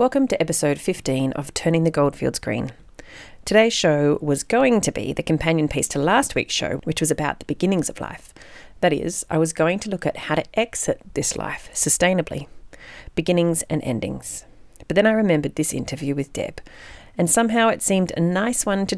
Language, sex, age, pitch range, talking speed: English, female, 40-59, 145-190 Hz, 195 wpm